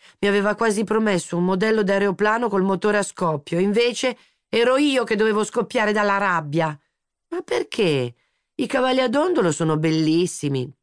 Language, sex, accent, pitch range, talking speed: Italian, female, native, 175-235 Hz, 150 wpm